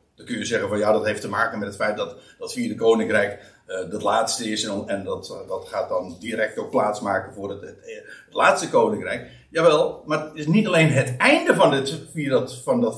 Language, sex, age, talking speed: Dutch, male, 60-79, 230 wpm